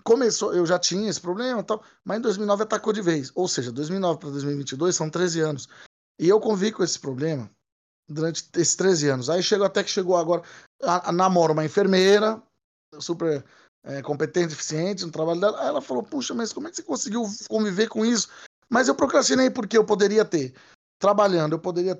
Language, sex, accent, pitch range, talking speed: Portuguese, male, Brazilian, 155-210 Hz, 195 wpm